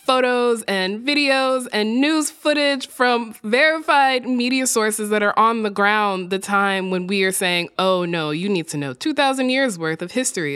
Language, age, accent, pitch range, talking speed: English, 20-39, American, 155-220 Hz, 180 wpm